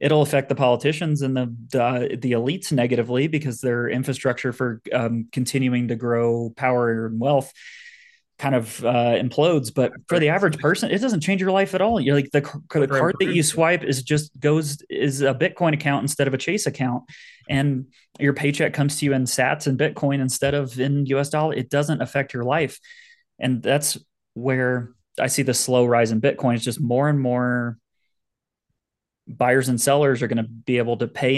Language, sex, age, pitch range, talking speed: English, male, 30-49, 125-145 Hz, 195 wpm